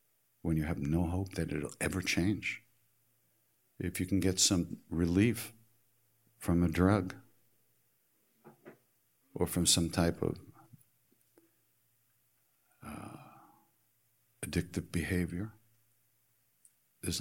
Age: 60-79